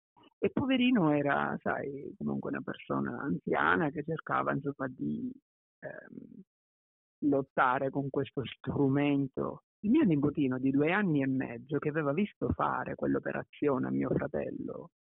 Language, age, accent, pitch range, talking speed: Italian, 50-69, native, 135-165 Hz, 125 wpm